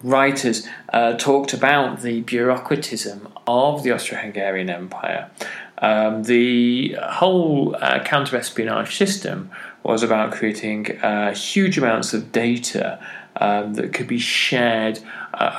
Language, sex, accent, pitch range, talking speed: English, male, British, 110-135 Hz, 115 wpm